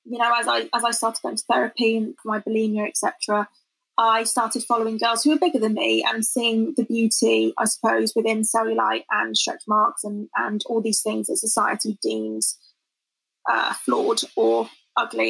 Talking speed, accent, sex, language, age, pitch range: 190 wpm, British, female, English, 20-39, 220-245 Hz